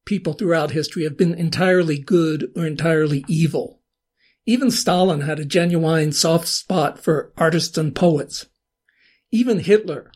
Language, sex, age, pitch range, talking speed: English, male, 60-79, 160-200 Hz, 135 wpm